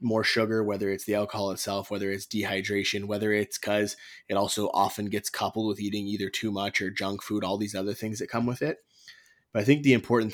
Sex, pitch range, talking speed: male, 95-110 Hz, 225 wpm